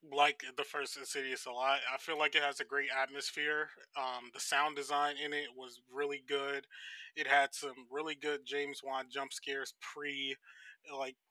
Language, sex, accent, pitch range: English, male, American, 130-150 Hz